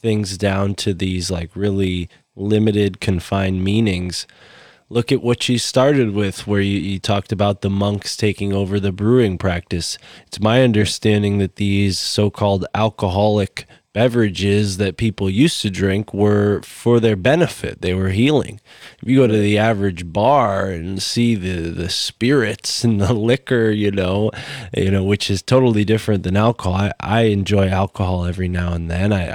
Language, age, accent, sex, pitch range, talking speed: English, 20-39, American, male, 95-115 Hz, 170 wpm